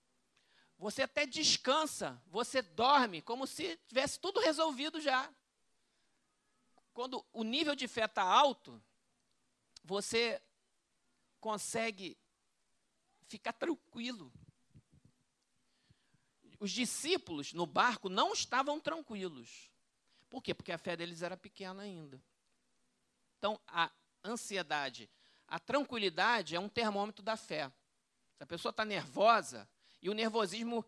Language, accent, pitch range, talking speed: Portuguese, Brazilian, 200-270 Hz, 110 wpm